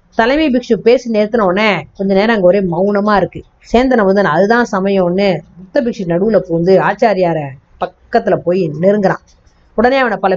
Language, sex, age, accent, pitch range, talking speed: Tamil, female, 20-39, native, 180-250 Hz, 145 wpm